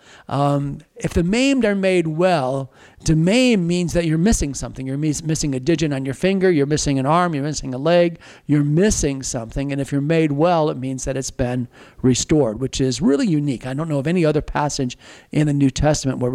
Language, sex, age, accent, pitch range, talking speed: English, male, 50-69, American, 140-185 Hz, 215 wpm